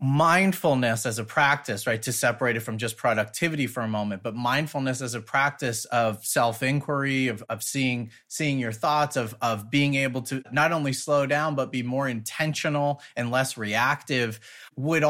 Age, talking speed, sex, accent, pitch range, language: 30-49, 175 wpm, male, American, 120-145 Hz, English